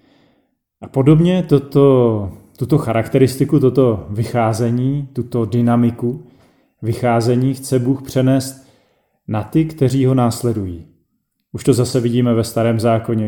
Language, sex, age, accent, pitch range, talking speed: Czech, male, 30-49, native, 115-130 Hz, 110 wpm